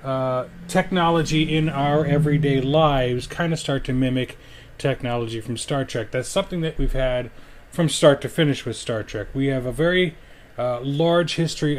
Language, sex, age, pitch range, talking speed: English, male, 30-49, 115-150 Hz, 175 wpm